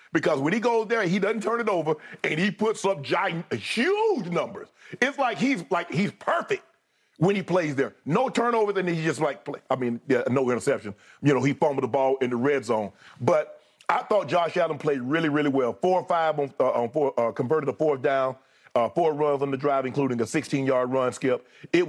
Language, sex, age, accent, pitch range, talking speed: English, male, 40-59, American, 130-175 Hz, 225 wpm